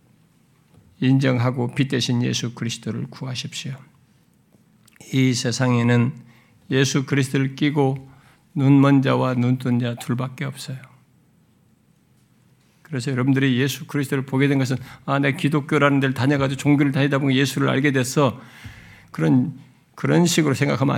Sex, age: male, 50-69